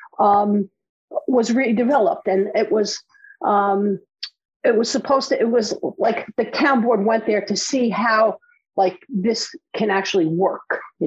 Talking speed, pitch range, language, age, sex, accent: 150 wpm, 185-270 Hz, English, 50-69, female, American